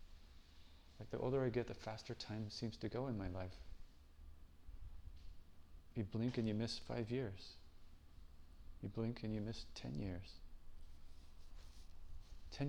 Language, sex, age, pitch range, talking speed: English, male, 30-49, 75-110 Hz, 135 wpm